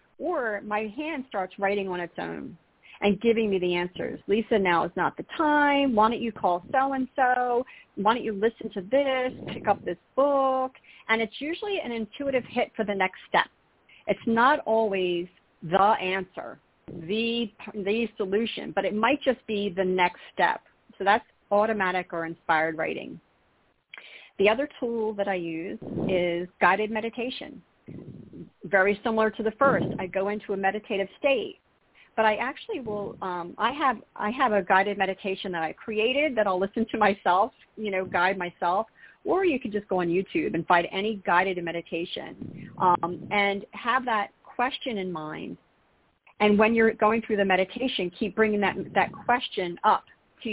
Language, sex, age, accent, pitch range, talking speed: English, female, 40-59, American, 190-235 Hz, 170 wpm